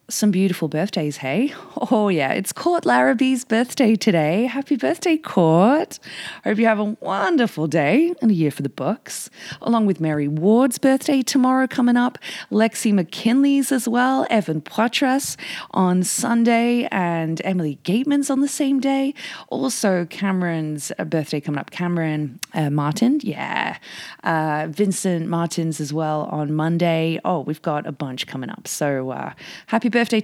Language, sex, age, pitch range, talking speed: English, female, 20-39, 160-235 Hz, 155 wpm